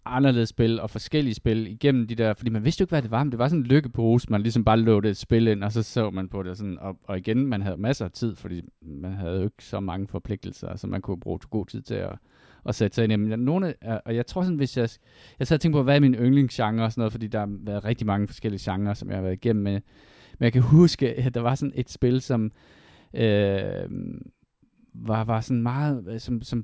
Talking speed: 265 wpm